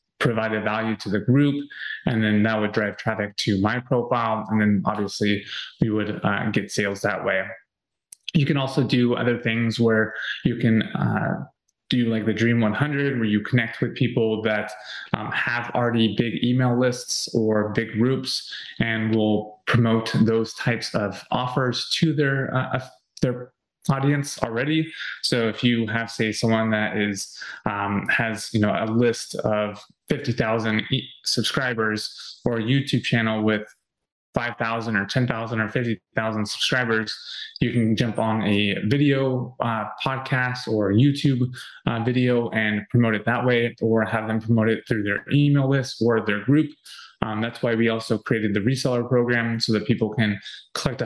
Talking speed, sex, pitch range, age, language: 165 wpm, male, 110-125 Hz, 20-39, English